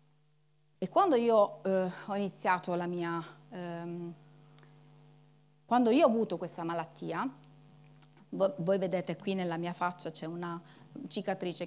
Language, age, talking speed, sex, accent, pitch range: Italian, 30-49, 110 wpm, female, native, 155-210 Hz